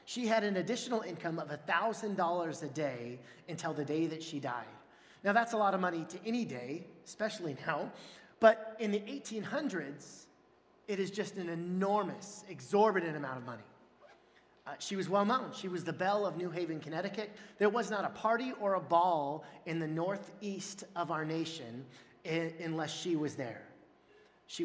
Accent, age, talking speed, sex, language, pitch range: American, 30-49, 170 wpm, male, English, 155-200 Hz